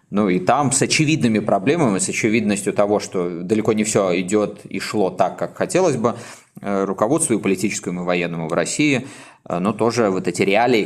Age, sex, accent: 20-39, male, native